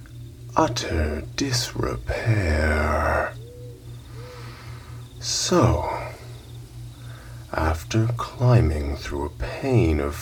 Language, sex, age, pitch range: English, male, 30-49, 75-120 Hz